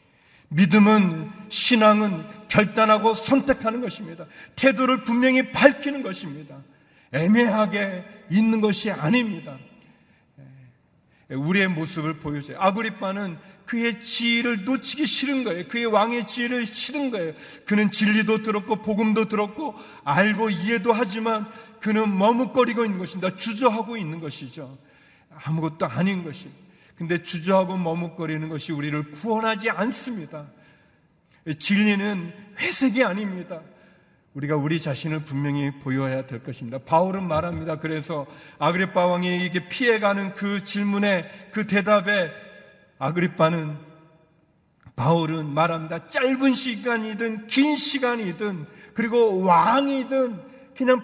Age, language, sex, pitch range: 40-59, Korean, male, 160-230 Hz